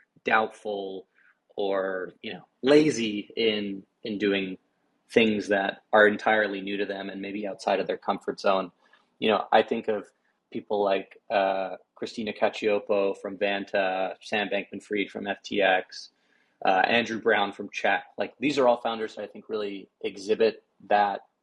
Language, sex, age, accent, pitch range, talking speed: English, male, 30-49, American, 100-115 Hz, 155 wpm